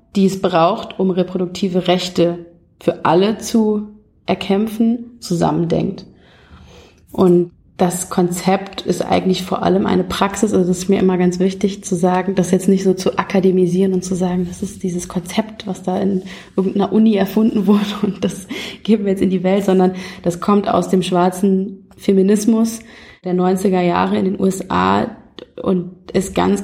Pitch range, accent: 180-195 Hz, German